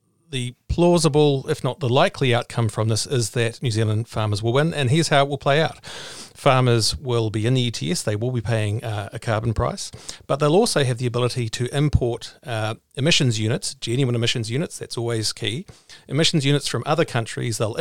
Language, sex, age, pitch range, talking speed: English, male, 40-59, 115-145 Hz, 200 wpm